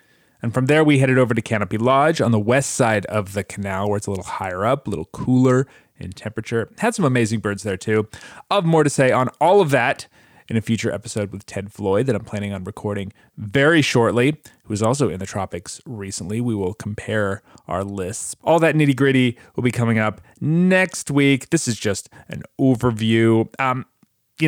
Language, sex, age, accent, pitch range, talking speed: English, male, 30-49, American, 100-140 Hz, 205 wpm